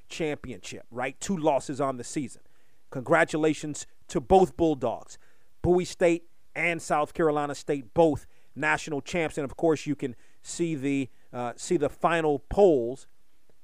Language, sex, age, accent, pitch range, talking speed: English, male, 40-59, American, 145-185 Hz, 140 wpm